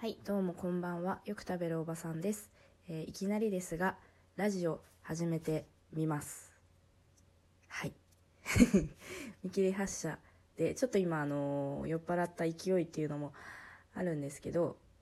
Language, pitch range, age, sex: Japanese, 105-170 Hz, 20-39, female